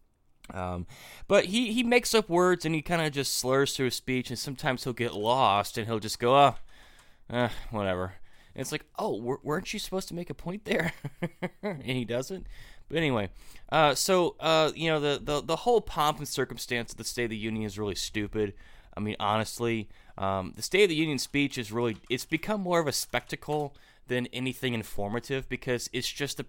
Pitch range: 110-150 Hz